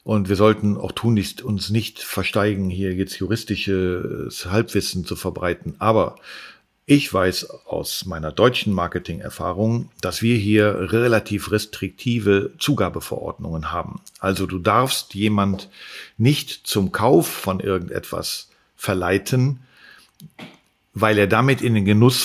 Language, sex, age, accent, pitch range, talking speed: German, male, 50-69, German, 95-115 Hz, 120 wpm